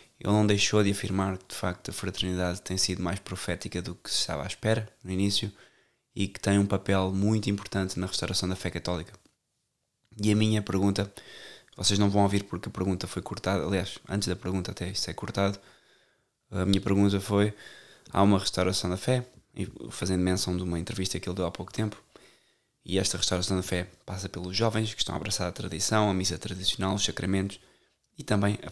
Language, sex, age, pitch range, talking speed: Portuguese, male, 20-39, 90-100 Hz, 200 wpm